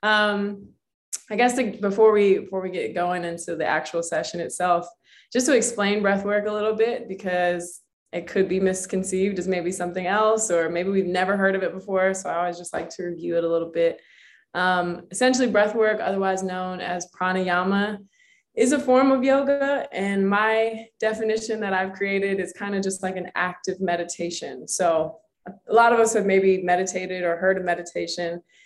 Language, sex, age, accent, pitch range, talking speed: English, female, 20-39, American, 180-225 Hz, 180 wpm